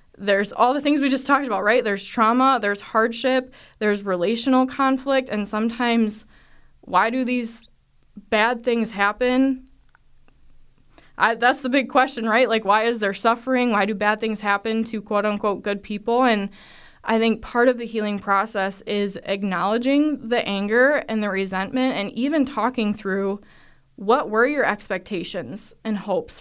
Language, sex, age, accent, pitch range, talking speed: English, female, 20-39, American, 200-245 Hz, 155 wpm